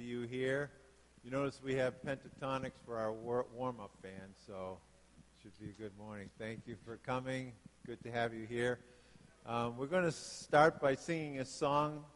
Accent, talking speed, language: American, 185 wpm, English